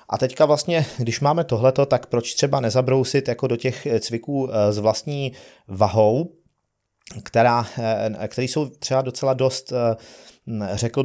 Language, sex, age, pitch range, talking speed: Czech, male, 30-49, 105-125 Hz, 125 wpm